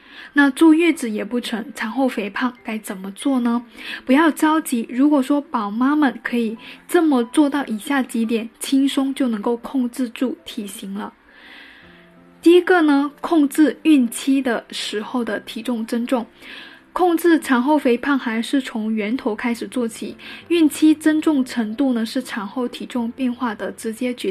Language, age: Chinese, 10-29